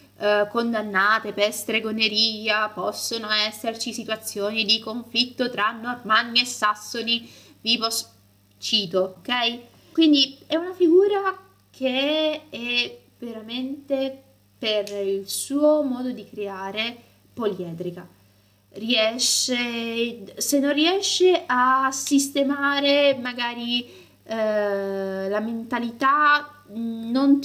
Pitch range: 205-270 Hz